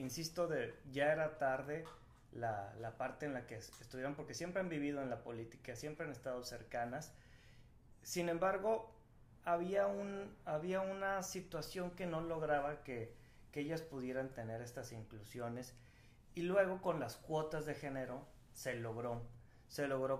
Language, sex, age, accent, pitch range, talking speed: Spanish, male, 30-49, Mexican, 120-160 Hz, 150 wpm